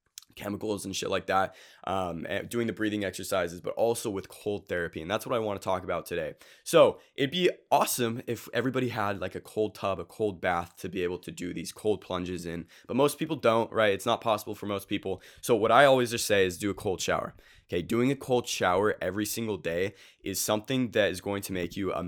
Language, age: English, 20-39